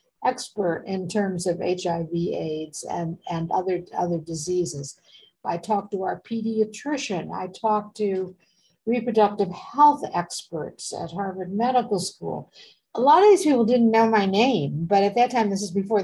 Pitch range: 180-230 Hz